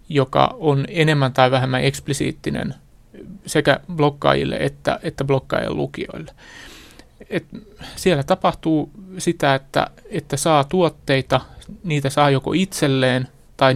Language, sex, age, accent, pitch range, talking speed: Finnish, male, 30-49, native, 135-160 Hz, 105 wpm